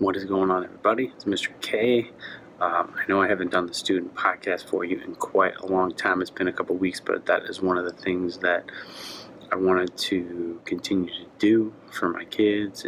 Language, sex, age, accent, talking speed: English, male, 20-39, American, 215 wpm